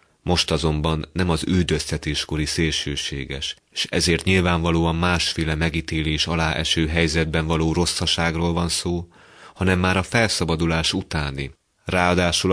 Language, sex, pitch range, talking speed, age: Hungarian, male, 80-90 Hz, 115 wpm, 30-49